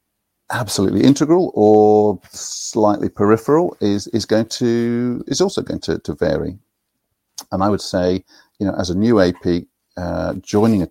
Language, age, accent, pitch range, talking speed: English, 50-69, British, 90-110 Hz, 155 wpm